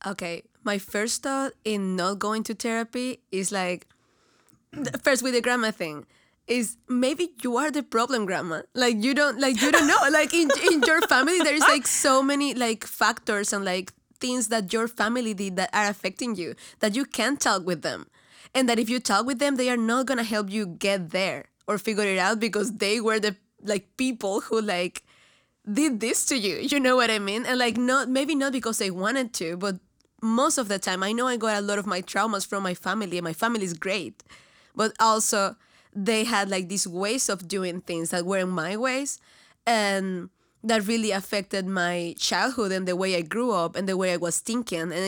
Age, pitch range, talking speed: 20-39, 190-250 Hz, 210 wpm